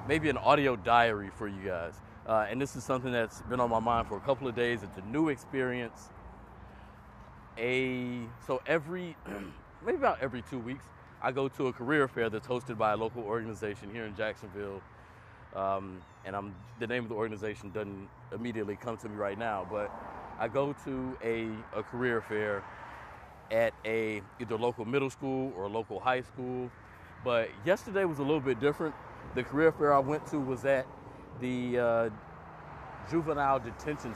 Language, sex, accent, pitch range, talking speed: English, male, American, 110-140 Hz, 180 wpm